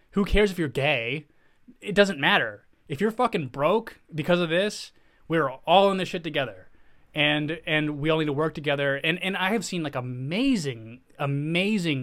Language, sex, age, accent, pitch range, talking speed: English, male, 20-39, American, 135-165 Hz, 185 wpm